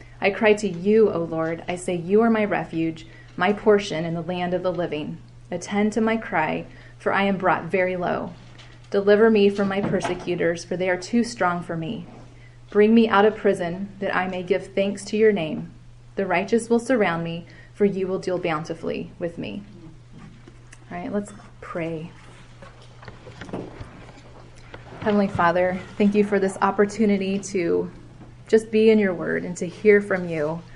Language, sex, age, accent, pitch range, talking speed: English, female, 20-39, American, 165-200 Hz, 175 wpm